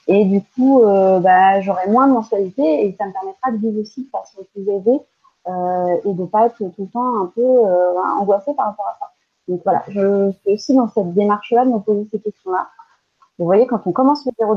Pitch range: 190-245 Hz